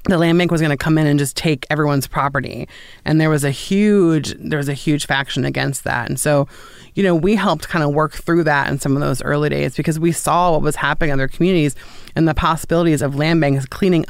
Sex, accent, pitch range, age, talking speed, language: female, American, 145-180 Hz, 30-49, 245 wpm, English